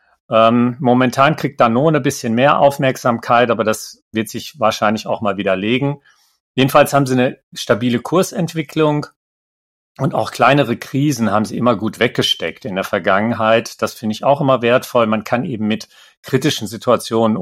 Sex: male